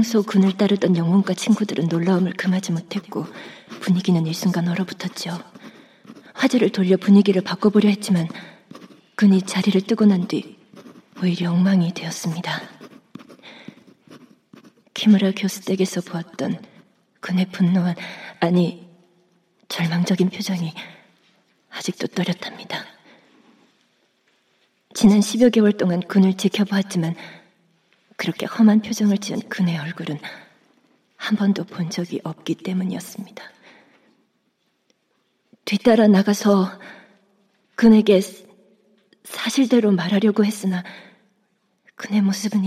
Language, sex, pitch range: Korean, female, 185-210 Hz